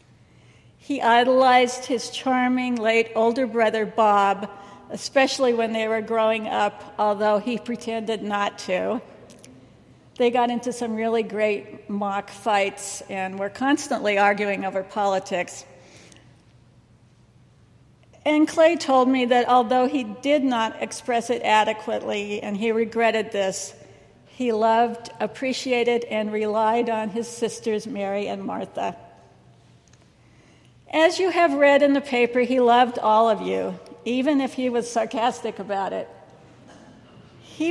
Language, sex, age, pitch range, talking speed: English, female, 60-79, 210-250 Hz, 125 wpm